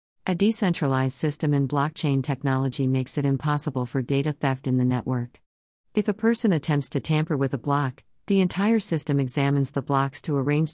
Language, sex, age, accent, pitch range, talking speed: English, female, 50-69, American, 130-155 Hz, 180 wpm